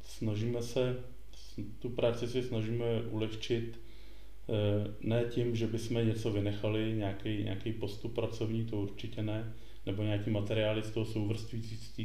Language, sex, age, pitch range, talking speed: Czech, male, 20-39, 105-115 Hz, 130 wpm